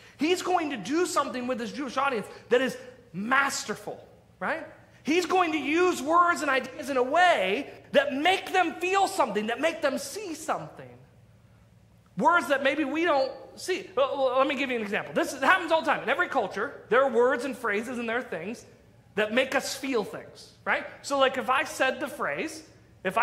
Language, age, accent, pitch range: English, 30-49, American, 210-300 Hz